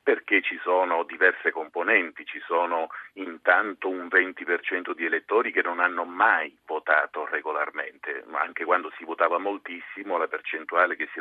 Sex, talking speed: male, 145 wpm